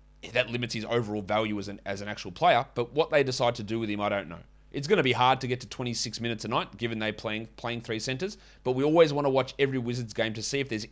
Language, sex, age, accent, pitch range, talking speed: English, male, 30-49, Australian, 105-135 Hz, 290 wpm